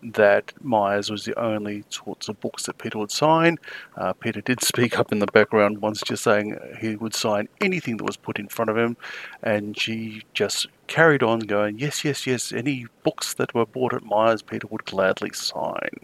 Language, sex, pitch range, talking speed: English, male, 105-135 Hz, 200 wpm